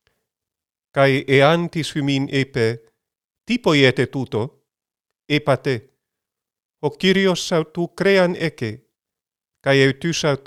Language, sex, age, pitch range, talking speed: Greek, male, 40-59, 125-150 Hz, 85 wpm